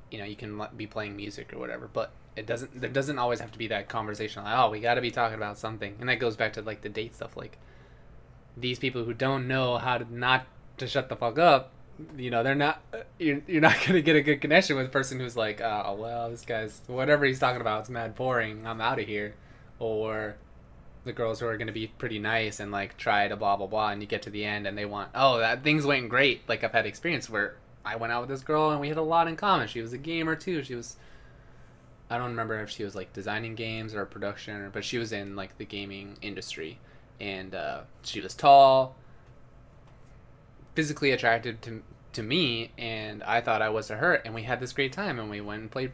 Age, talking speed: 20-39, 245 wpm